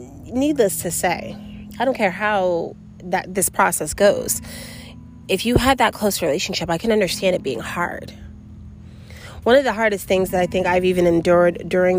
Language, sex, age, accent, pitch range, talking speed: English, female, 30-49, American, 165-190 Hz, 175 wpm